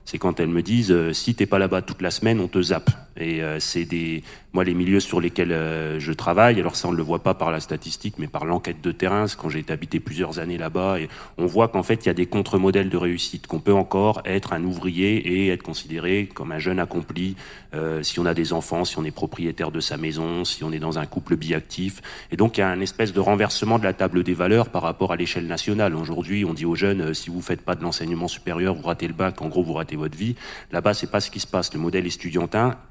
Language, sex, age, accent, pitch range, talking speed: French, male, 30-49, French, 85-100 Hz, 270 wpm